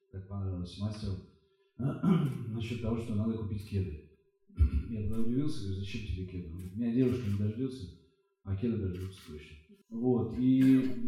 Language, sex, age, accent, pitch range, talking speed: Russian, male, 40-59, native, 100-130 Hz, 135 wpm